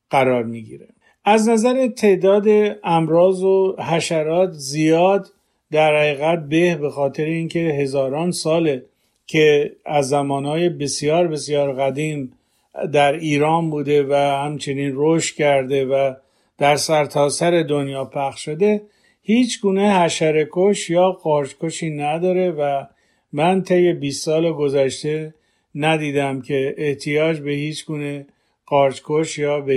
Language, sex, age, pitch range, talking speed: Persian, male, 50-69, 145-170 Hz, 115 wpm